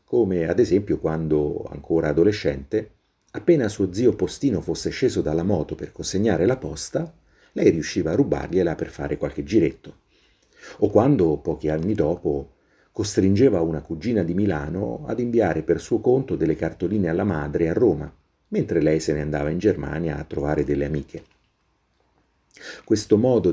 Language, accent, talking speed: Italian, native, 155 wpm